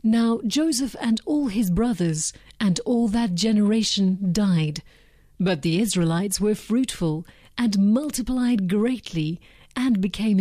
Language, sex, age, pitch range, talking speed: English, female, 40-59, 175-230 Hz, 120 wpm